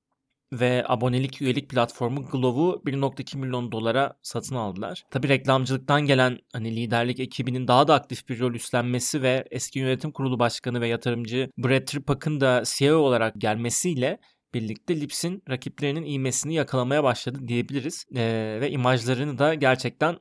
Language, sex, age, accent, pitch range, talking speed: Turkish, male, 30-49, native, 125-150 Hz, 140 wpm